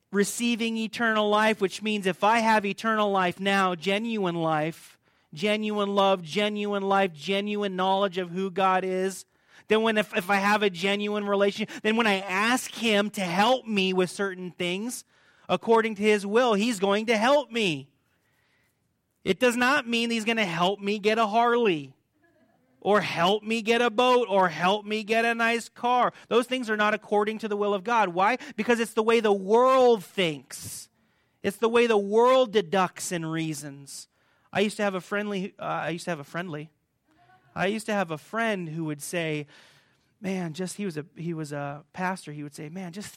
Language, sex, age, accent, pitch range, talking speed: English, male, 30-49, American, 175-220 Hz, 195 wpm